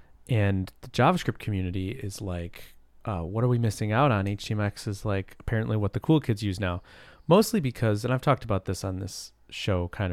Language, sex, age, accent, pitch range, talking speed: English, male, 30-49, American, 95-120 Hz, 200 wpm